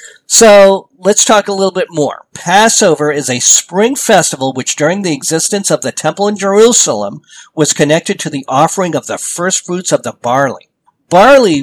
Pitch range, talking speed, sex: 135-185 Hz, 175 wpm, male